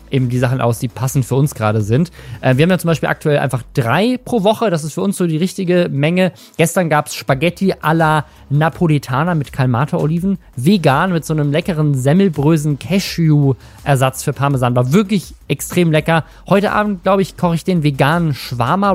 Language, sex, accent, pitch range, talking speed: German, male, German, 130-175 Hz, 185 wpm